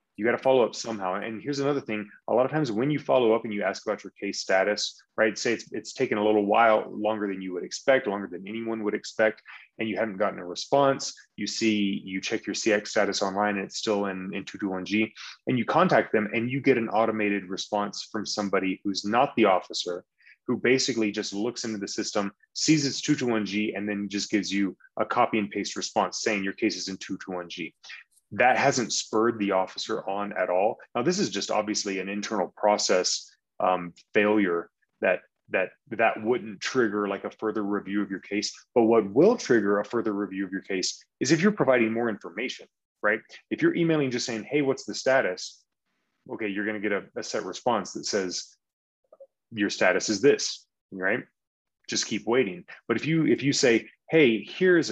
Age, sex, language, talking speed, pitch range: 20-39, male, English, 205 wpm, 100-115 Hz